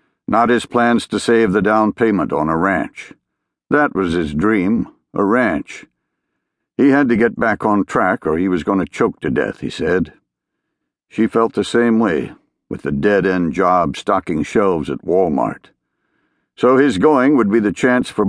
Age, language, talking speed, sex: 60-79, English, 180 wpm, male